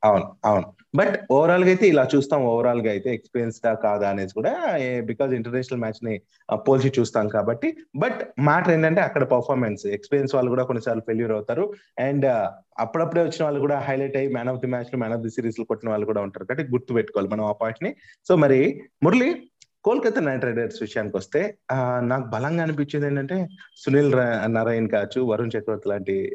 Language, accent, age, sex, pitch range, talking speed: Telugu, native, 30-49, male, 115-150 Hz, 180 wpm